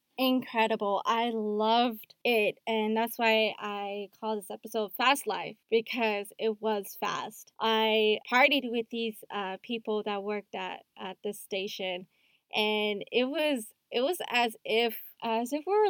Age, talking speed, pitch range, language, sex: 10-29, 150 wpm, 210-245 Hz, English, female